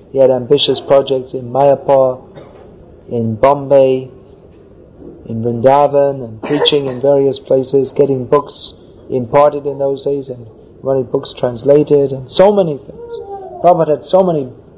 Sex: male